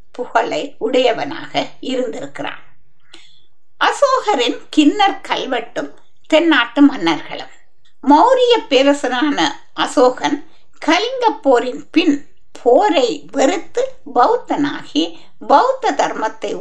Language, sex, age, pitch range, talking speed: Tamil, female, 60-79, 255-360 Hz, 40 wpm